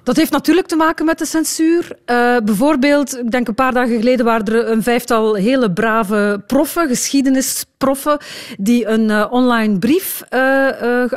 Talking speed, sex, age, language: 165 wpm, female, 40-59, Dutch